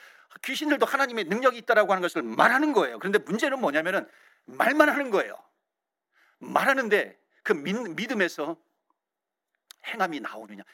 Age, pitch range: 50-69, 205-280 Hz